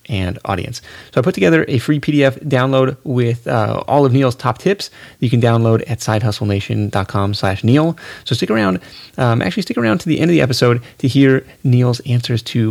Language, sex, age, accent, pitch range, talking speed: English, male, 30-49, American, 115-145 Hz, 205 wpm